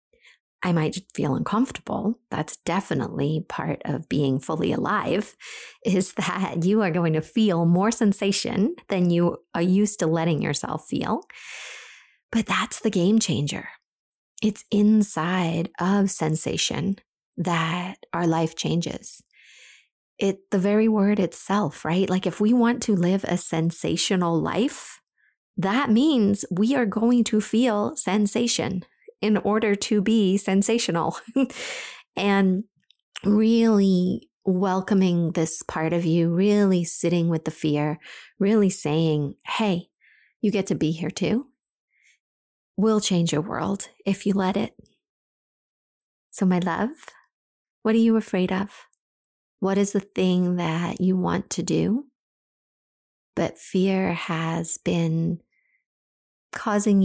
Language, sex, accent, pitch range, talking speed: English, female, American, 170-215 Hz, 125 wpm